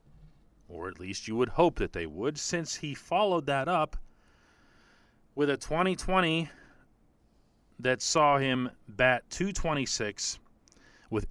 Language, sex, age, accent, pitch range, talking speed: English, male, 40-59, American, 90-135 Hz, 120 wpm